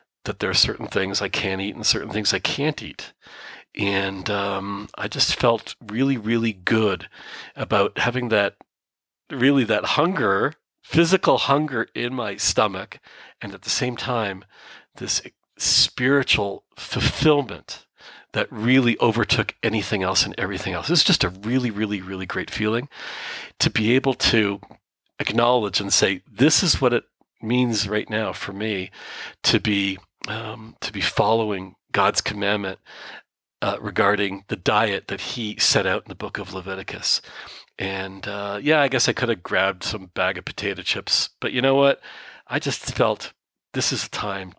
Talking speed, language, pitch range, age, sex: 160 wpm, English, 100-125 Hz, 40-59, male